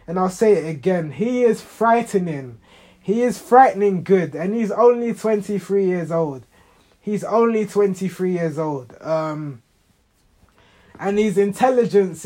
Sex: male